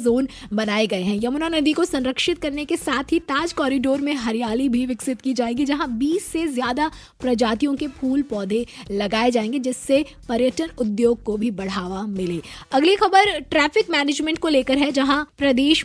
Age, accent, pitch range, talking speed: 20-39, native, 240-300 Hz, 115 wpm